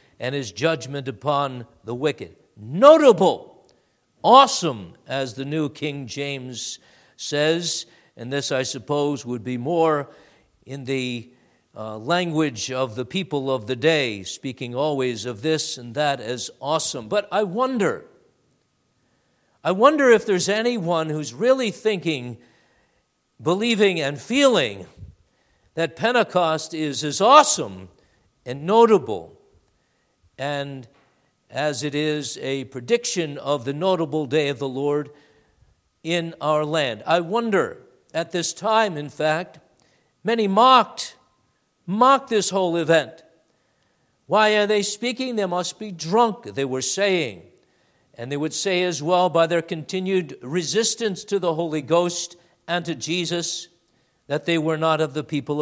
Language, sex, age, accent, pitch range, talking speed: English, male, 50-69, American, 140-190 Hz, 135 wpm